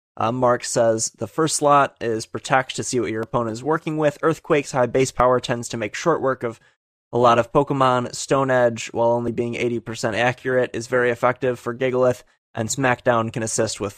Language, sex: English, male